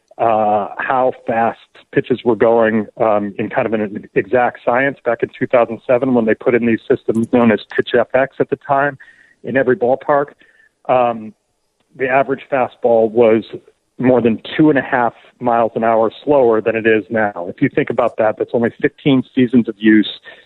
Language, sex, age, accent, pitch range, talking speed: English, male, 40-59, American, 115-135 Hz, 190 wpm